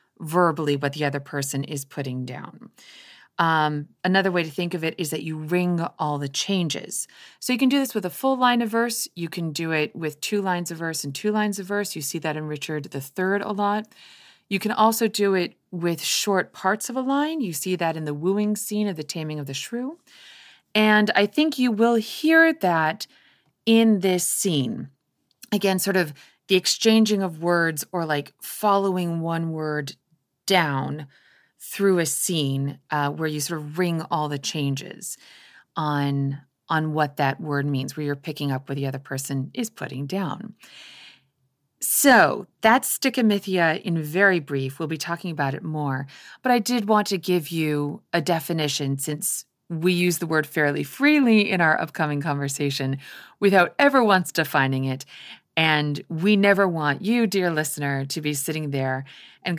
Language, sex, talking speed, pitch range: English, female, 180 wpm, 145-200 Hz